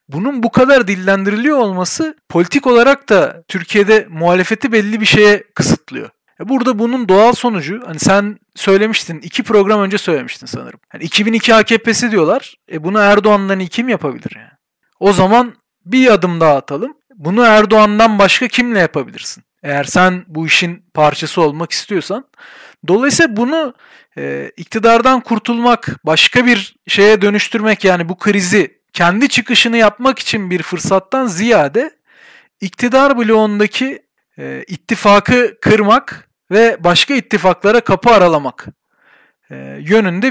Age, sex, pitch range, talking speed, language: 40-59, male, 180-235 Hz, 120 wpm, Turkish